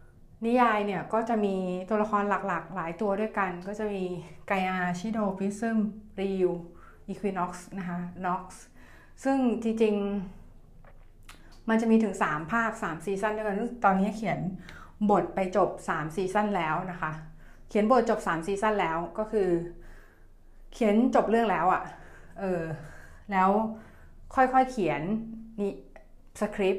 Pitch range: 175-220 Hz